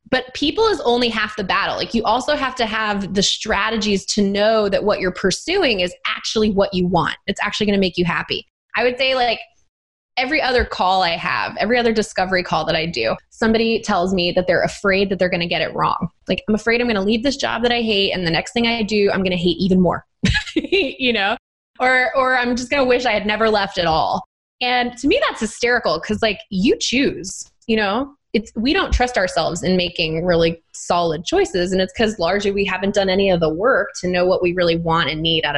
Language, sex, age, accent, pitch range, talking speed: English, female, 20-39, American, 185-245 Hz, 240 wpm